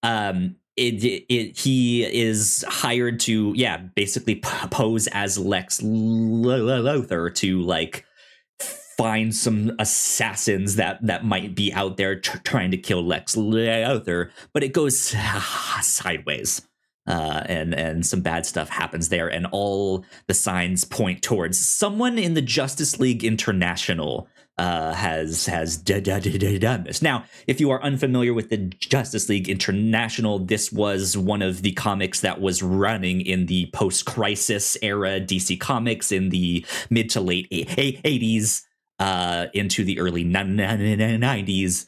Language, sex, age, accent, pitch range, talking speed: English, male, 30-49, American, 95-115 Hz, 135 wpm